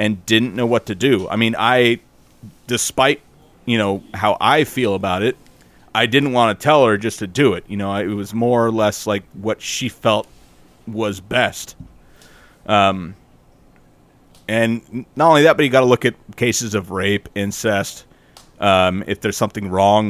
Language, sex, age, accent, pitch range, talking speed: English, male, 30-49, American, 95-120 Hz, 180 wpm